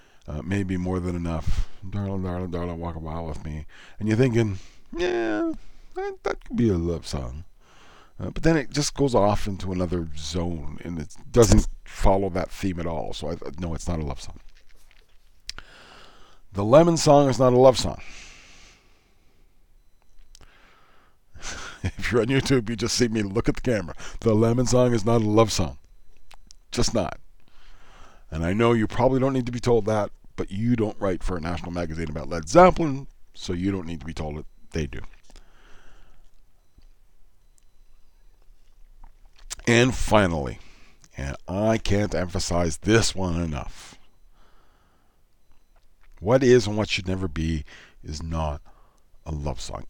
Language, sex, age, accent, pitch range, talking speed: English, male, 40-59, American, 80-110 Hz, 160 wpm